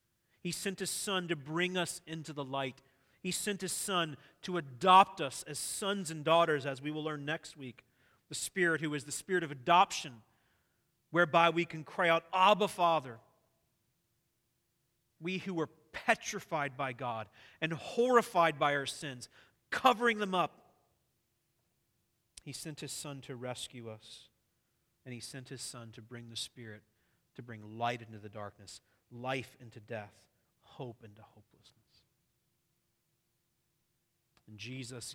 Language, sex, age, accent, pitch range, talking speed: English, male, 40-59, American, 115-155 Hz, 145 wpm